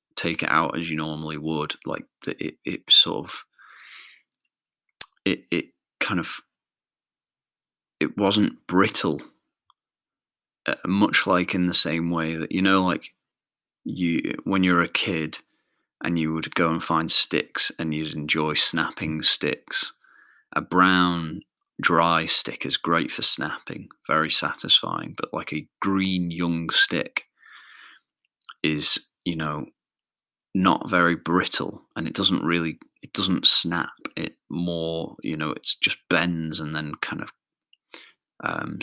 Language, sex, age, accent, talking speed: English, male, 30-49, British, 140 wpm